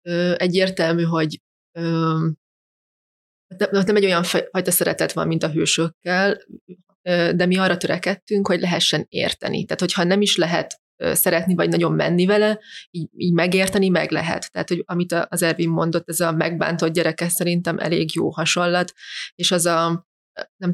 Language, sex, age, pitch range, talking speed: Hungarian, female, 20-39, 170-190 Hz, 155 wpm